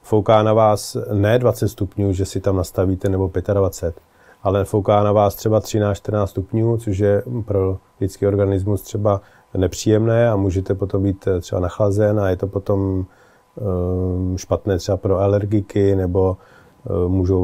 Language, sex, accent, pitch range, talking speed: Czech, male, native, 95-110 Hz, 145 wpm